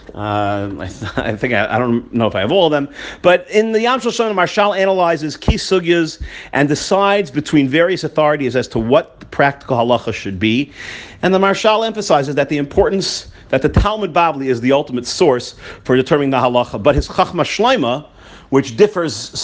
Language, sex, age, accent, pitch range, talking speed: English, male, 40-59, American, 125-170 Hz, 195 wpm